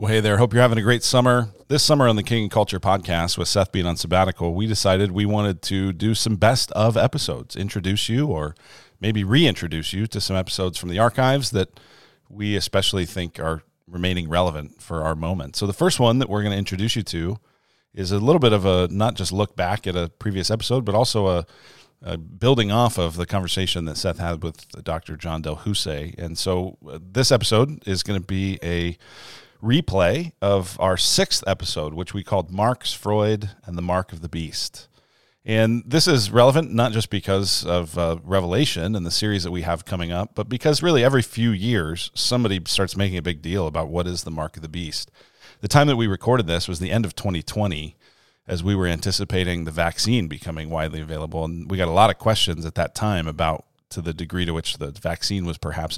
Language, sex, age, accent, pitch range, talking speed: English, male, 40-59, American, 85-110 Hz, 215 wpm